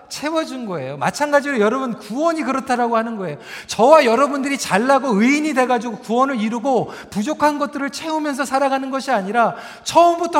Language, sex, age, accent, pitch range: Korean, male, 40-59, native, 230-295 Hz